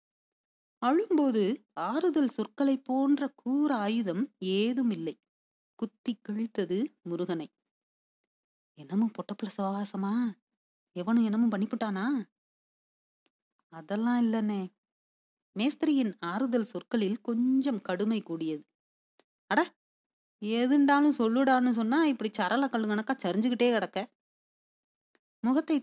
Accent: native